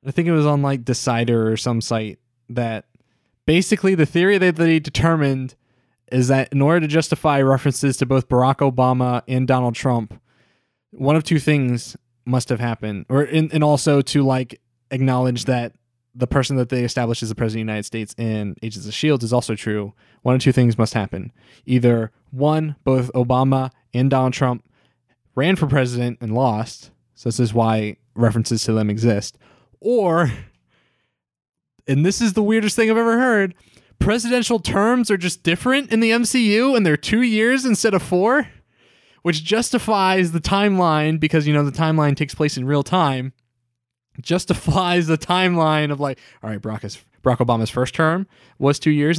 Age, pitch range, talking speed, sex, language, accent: 20-39, 120-165 Hz, 180 wpm, male, English, American